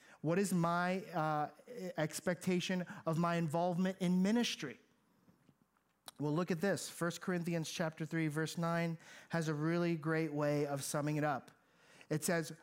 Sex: male